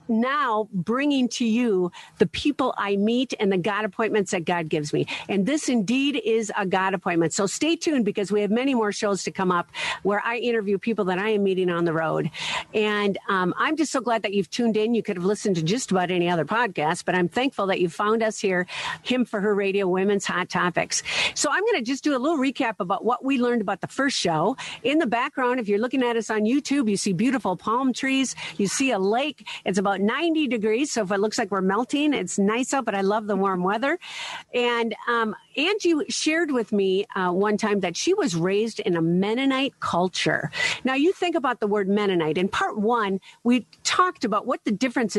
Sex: female